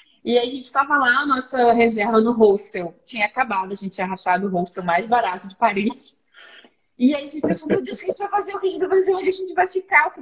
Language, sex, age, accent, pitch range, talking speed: Portuguese, female, 10-29, Brazilian, 205-290 Hz, 290 wpm